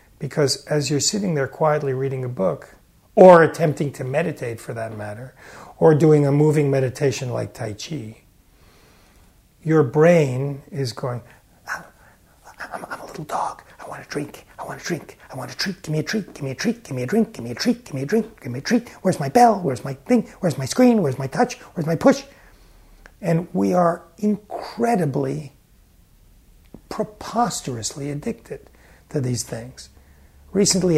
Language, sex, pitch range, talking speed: English, male, 115-185 Hz, 180 wpm